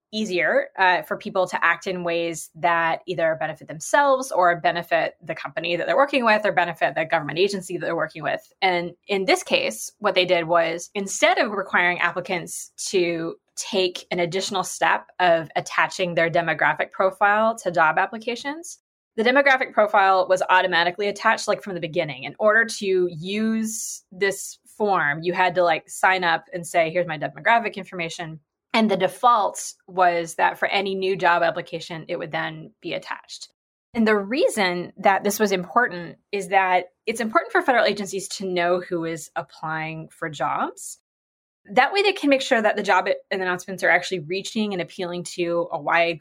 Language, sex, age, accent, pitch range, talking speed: English, female, 20-39, American, 170-205 Hz, 175 wpm